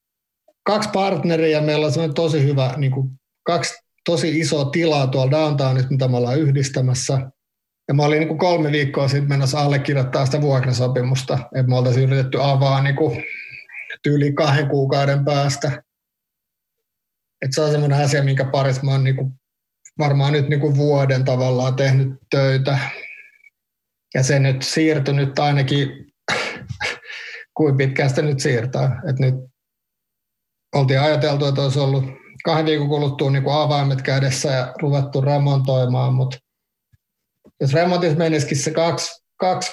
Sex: male